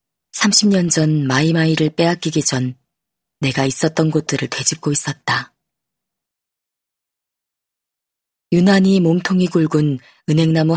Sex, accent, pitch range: female, native, 140-180 Hz